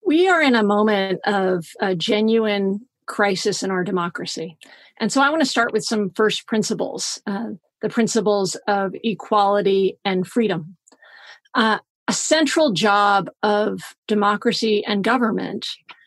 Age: 40-59